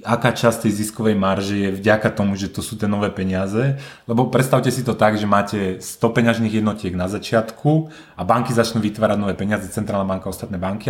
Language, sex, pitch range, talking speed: Slovak, male, 100-120 Hz, 205 wpm